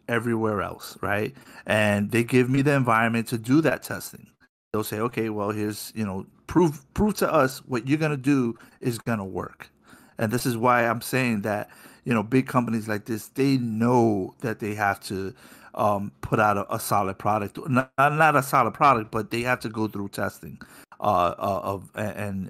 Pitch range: 105-130 Hz